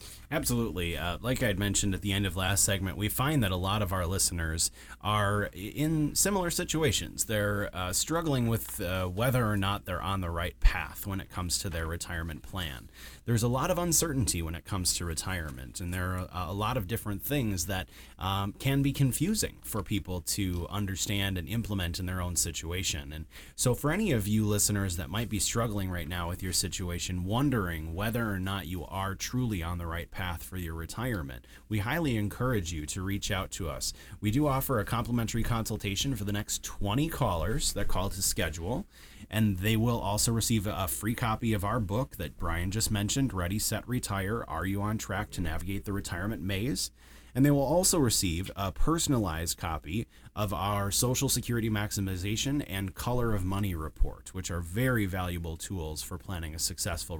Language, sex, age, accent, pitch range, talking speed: English, male, 30-49, American, 90-115 Hz, 195 wpm